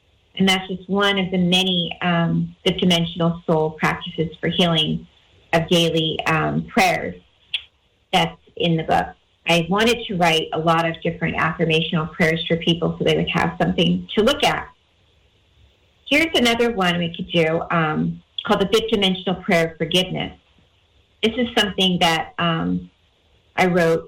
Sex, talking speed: female, 155 wpm